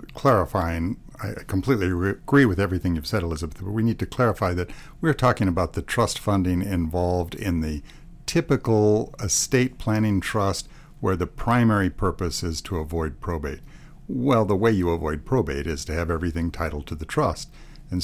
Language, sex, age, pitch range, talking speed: English, male, 60-79, 85-120 Hz, 170 wpm